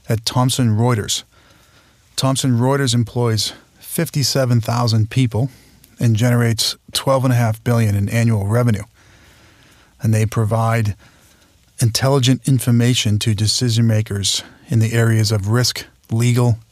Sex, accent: male, American